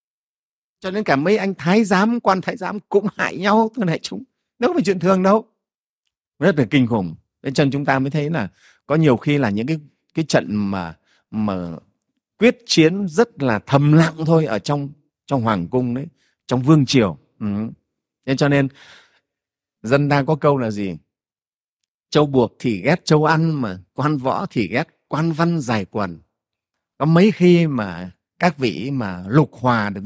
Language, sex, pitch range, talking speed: Vietnamese, male, 125-185 Hz, 185 wpm